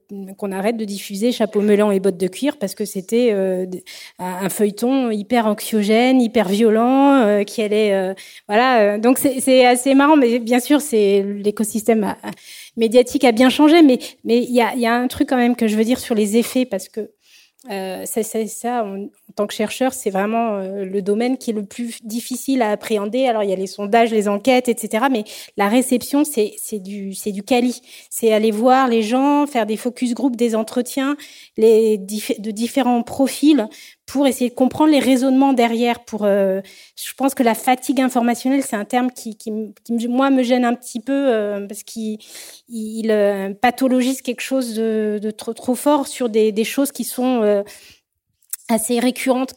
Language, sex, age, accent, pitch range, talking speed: French, female, 20-39, French, 210-255 Hz, 195 wpm